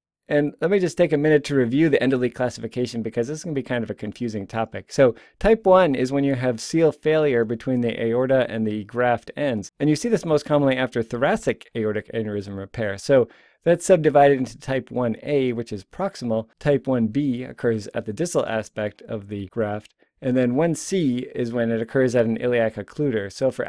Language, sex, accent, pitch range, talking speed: English, male, American, 110-140 Hz, 210 wpm